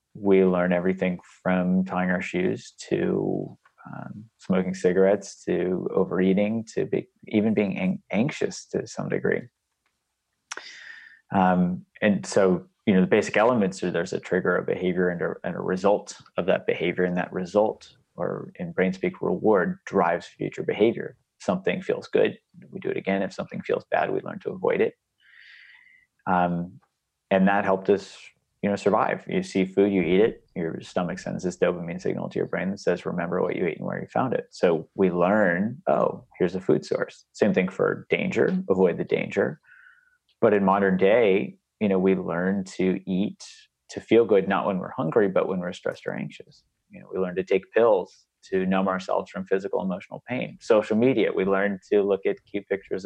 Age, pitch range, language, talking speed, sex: 30-49, 95-125 Hz, English, 185 wpm, male